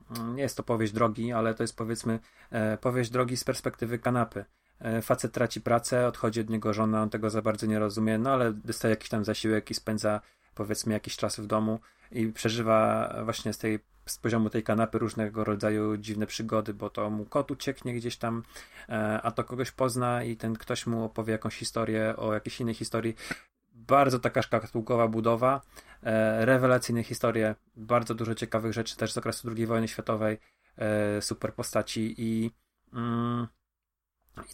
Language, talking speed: Polish, 165 wpm